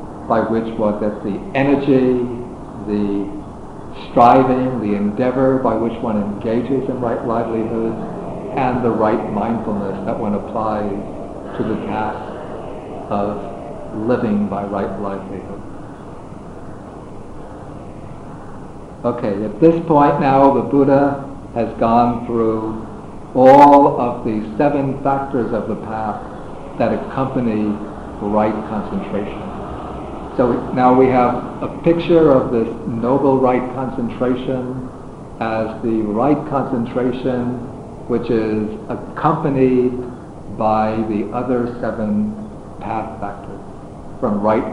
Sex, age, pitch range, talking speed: male, 60-79, 105-135 Hz, 105 wpm